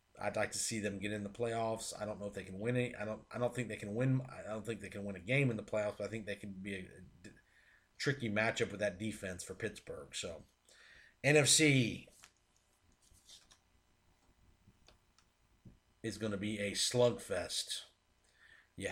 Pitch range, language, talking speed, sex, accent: 105-130 Hz, English, 190 wpm, male, American